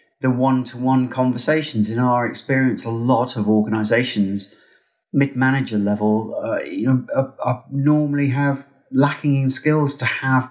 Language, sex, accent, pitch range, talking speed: English, male, British, 115-135 Hz, 135 wpm